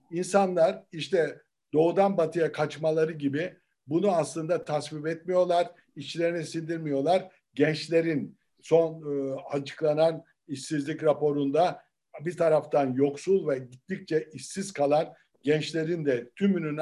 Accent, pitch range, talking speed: native, 150-195 Hz, 100 wpm